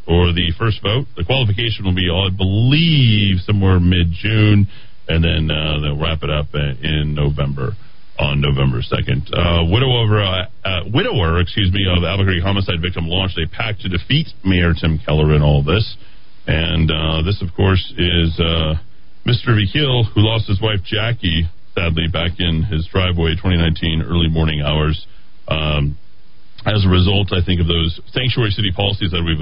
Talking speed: 175 wpm